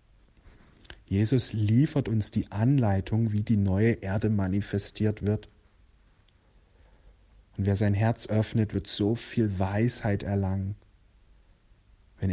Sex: male